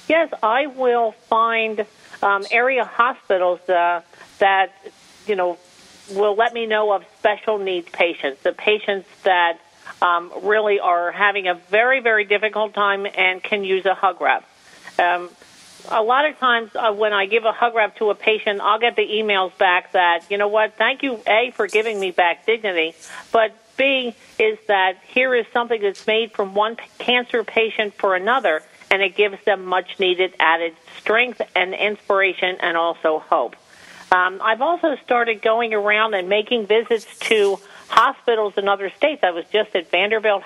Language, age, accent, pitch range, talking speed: English, 50-69, American, 185-225 Hz, 170 wpm